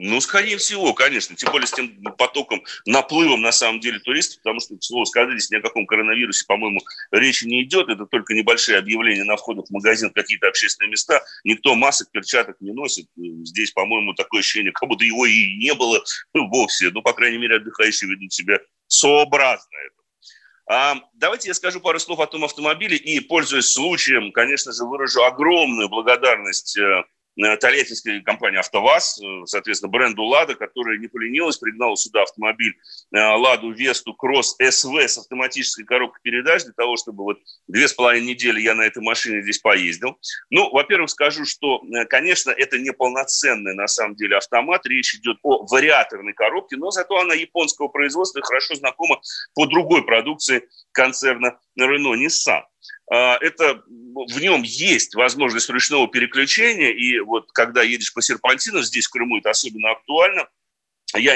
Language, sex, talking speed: Russian, male, 160 wpm